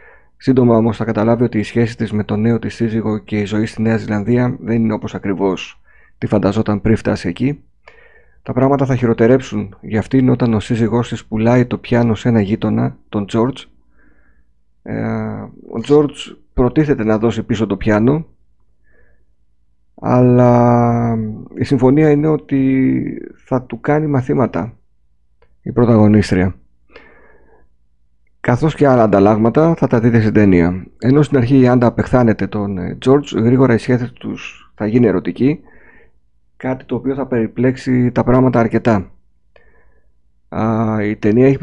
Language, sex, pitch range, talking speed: Greek, male, 100-125 Hz, 145 wpm